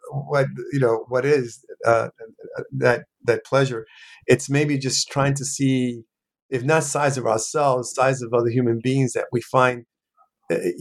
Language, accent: English, American